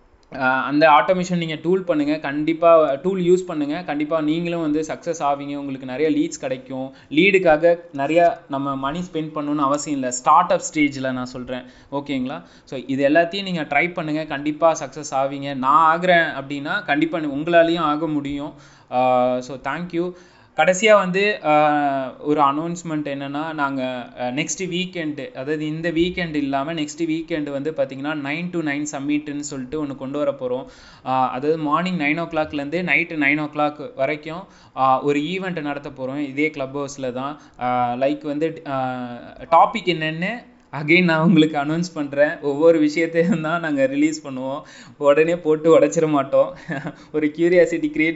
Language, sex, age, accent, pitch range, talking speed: English, male, 20-39, Indian, 140-170 Hz, 80 wpm